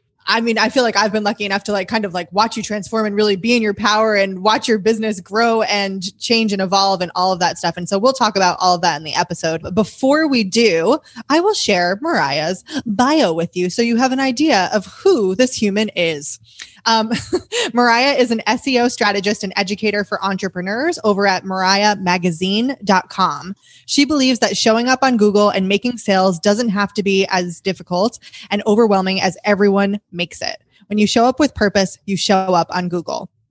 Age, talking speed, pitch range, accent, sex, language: 20-39, 205 wpm, 190-240 Hz, American, female, English